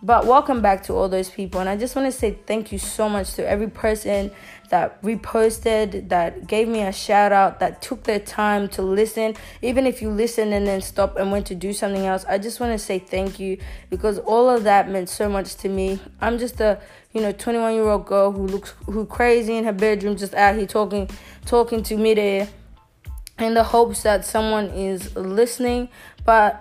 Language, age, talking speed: English, 20-39, 210 wpm